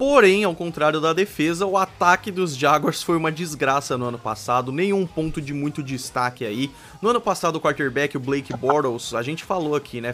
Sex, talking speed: male, 200 wpm